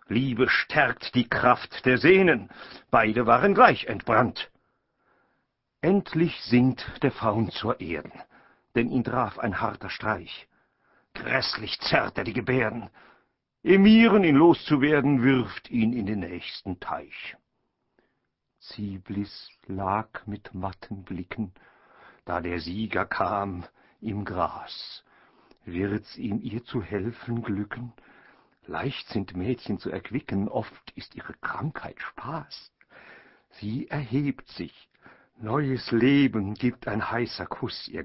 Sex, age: male, 60-79